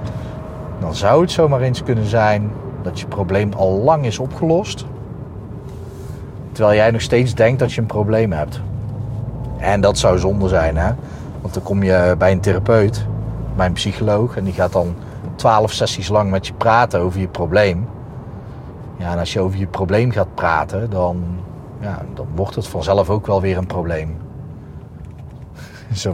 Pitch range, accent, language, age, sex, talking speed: 95-125 Hz, Dutch, Dutch, 40-59, male, 170 wpm